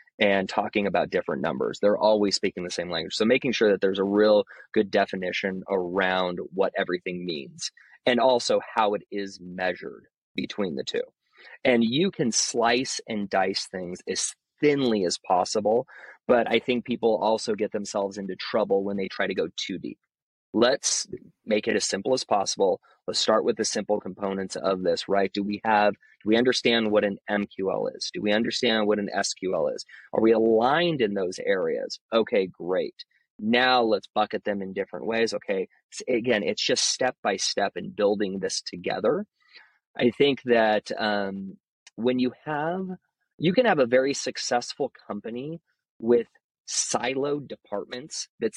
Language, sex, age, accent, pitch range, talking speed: English, male, 30-49, American, 100-125 Hz, 170 wpm